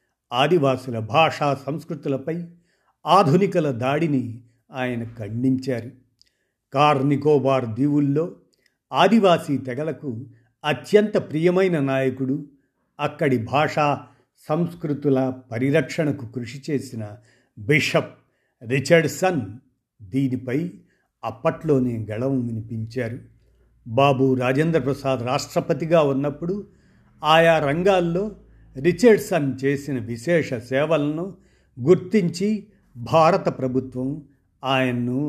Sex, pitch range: male, 120-155 Hz